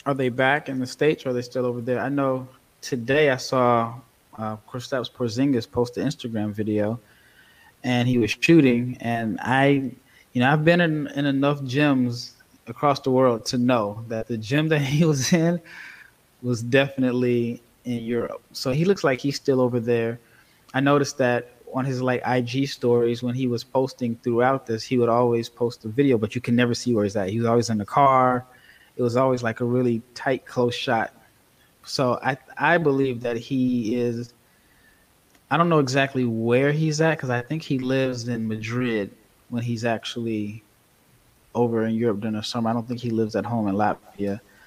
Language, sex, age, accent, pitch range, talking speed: English, male, 20-39, American, 115-135 Hz, 200 wpm